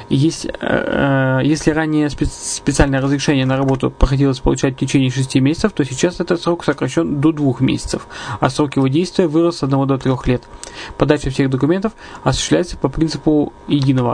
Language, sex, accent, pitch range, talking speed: Russian, male, native, 135-155 Hz, 170 wpm